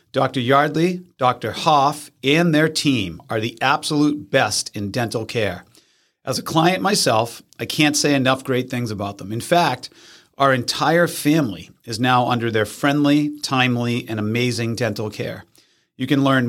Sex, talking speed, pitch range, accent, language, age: male, 160 wpm, 120-150 Hz, American, English, 40-59